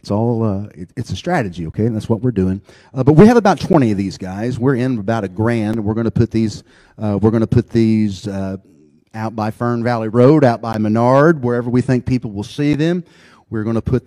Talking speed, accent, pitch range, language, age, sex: 235 wpm, American, 105-130 Hz, English, 40-59, male